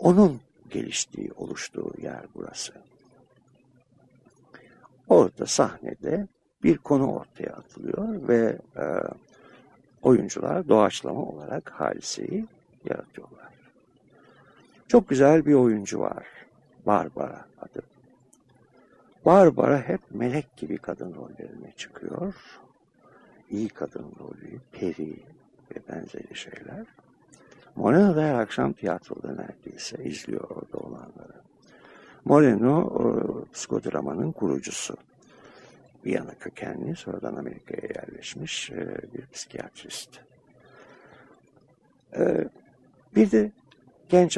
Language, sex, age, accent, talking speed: Turkish, male, 60-79, native, 80 wpm